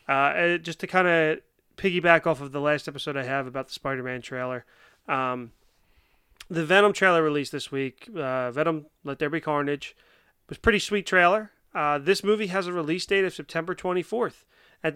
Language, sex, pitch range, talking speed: English, male, 140-170 Hz, 185 wpm